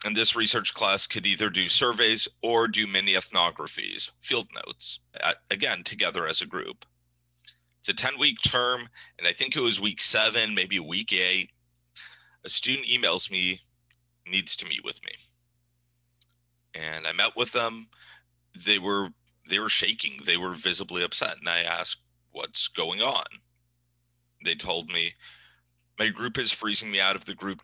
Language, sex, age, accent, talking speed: English, male, 40-59, American, 165 wpm